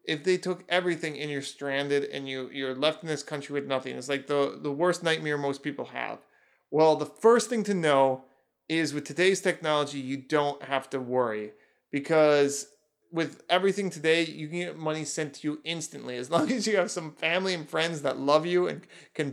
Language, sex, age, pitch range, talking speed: English, male, 30-49, 140-175 Hz, 205 wpm